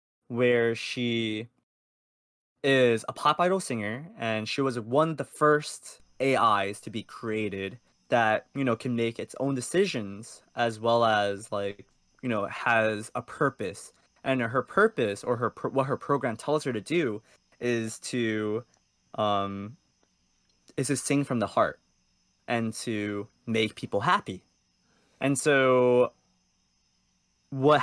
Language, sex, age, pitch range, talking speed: English, male, 20-39, 105-130 Hz, 140 wpm